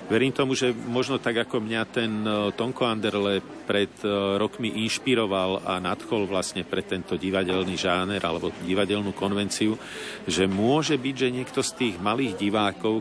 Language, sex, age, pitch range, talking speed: Slovak, male, 50-69, 100-115 Hz, 150 wpm